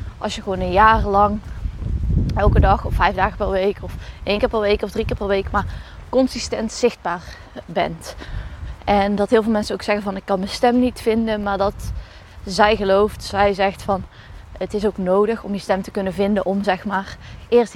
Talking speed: 210 wpm